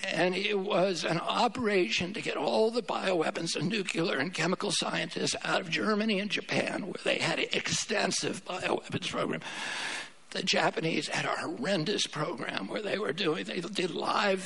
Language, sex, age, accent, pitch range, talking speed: English, male, 60-79, American, 180-210 Hz, 165 wpm